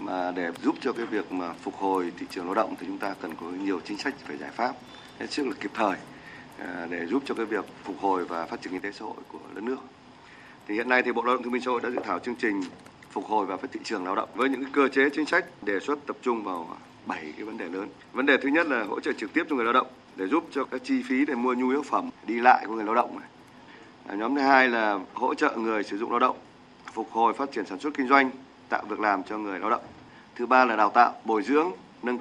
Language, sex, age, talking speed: Vietnamese, male, 20-39, 280 wpm